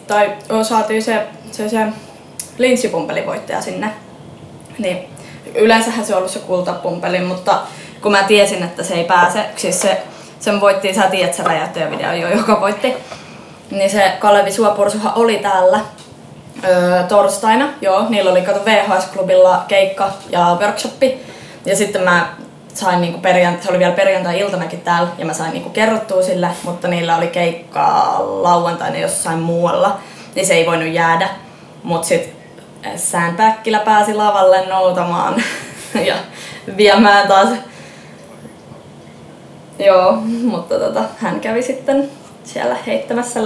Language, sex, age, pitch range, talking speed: Finnish, female, 20-39, 185-225 Hz, 130 wpm